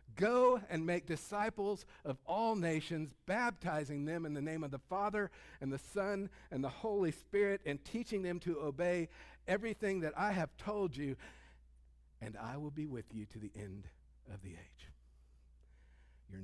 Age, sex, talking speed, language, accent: 60-79, male, 170 wpm, English, American